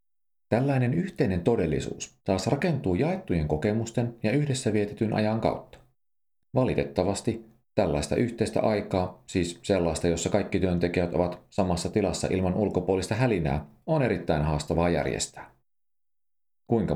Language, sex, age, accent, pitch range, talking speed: Finnish, male, 40-59, native, 85-105 Hz, 115 wpm